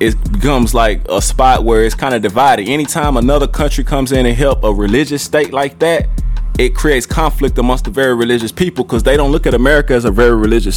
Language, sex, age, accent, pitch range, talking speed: English, male, 20-39, American, 105-140 Hz, 225 wpm